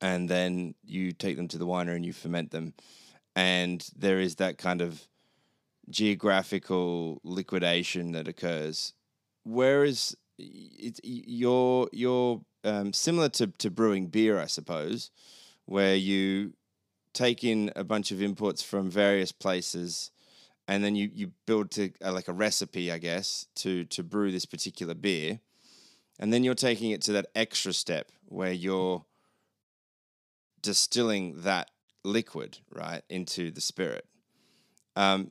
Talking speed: 130 wpm